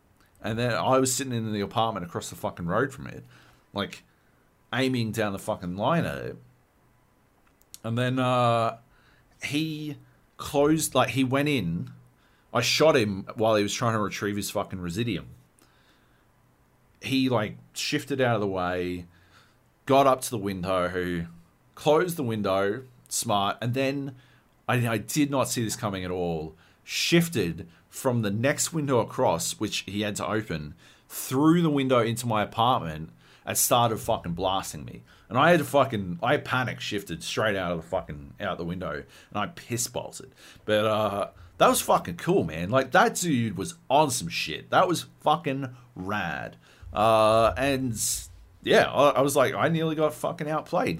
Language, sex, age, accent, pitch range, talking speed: English, male, 40-59, Australian, 95-130 Hz, 165 wpm